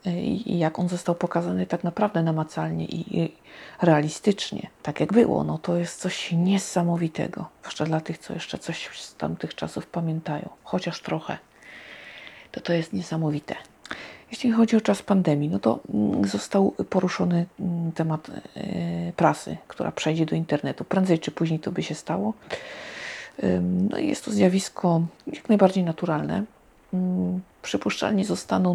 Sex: female